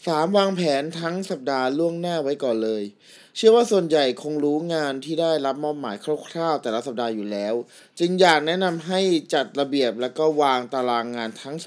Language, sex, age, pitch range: Thai, male, 20-39, 125-175 Hz